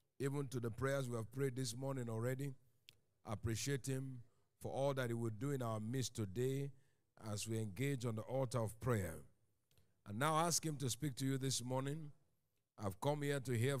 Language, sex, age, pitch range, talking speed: English, male, 50-69, 105-135 Hz, 200 wpm